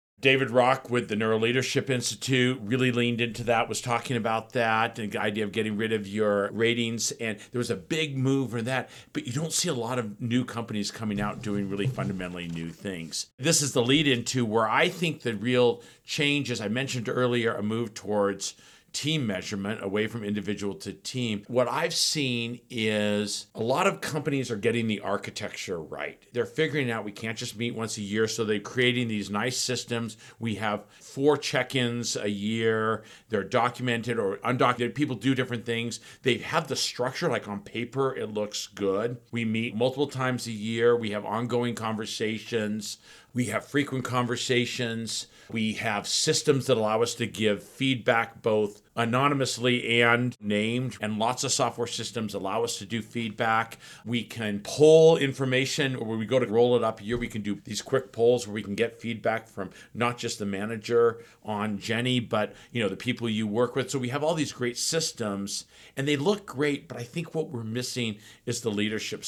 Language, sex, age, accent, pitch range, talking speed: English, male, 50-69, American, 110-125 Hz, 190 wpm